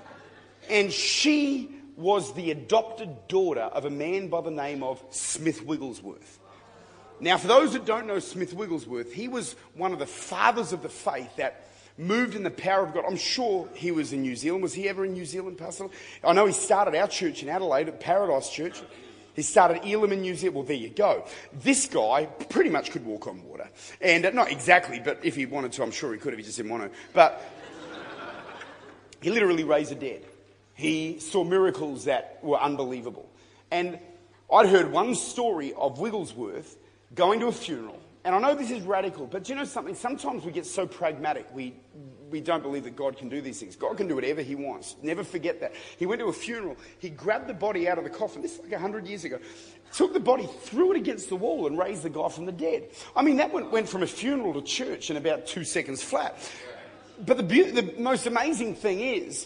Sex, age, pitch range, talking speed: male, 30-49, 160-240 Hz, 215 wpm